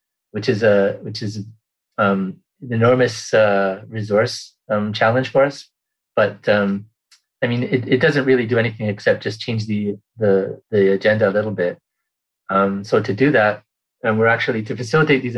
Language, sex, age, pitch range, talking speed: English, male, 30-49, 100-115 Hz, 175 wpm